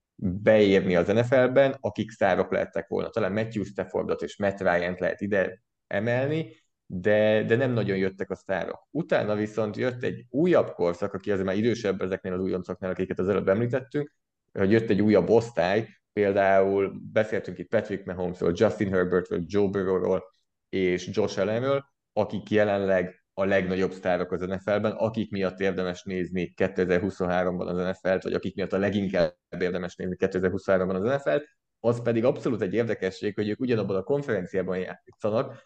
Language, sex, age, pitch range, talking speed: Hungarian, male, 20-39, 95-110 Hz, 155 wpm